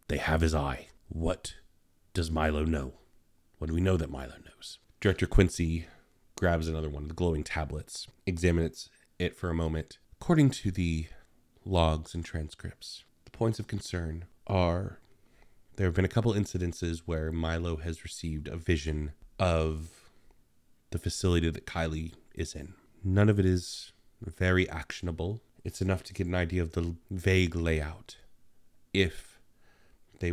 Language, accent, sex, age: English, American, male, 30-49